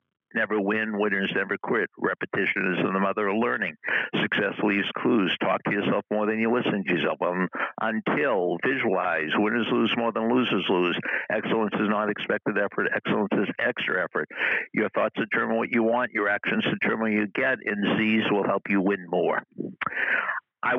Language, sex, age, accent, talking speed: English, male, 60-79, American, 180 wpm